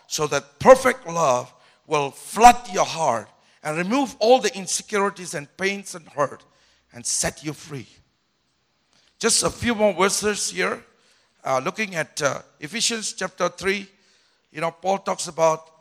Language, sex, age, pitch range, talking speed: English, male, 60-79, 165-225 Hz, 150 wpm